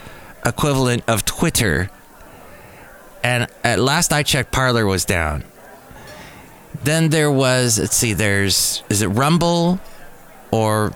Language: English